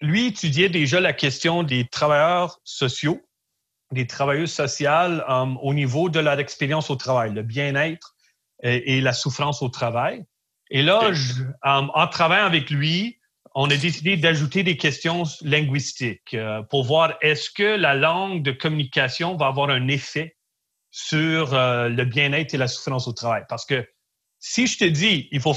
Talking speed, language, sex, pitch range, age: 170 wpm, French, male, 140-175 Hz, 30-49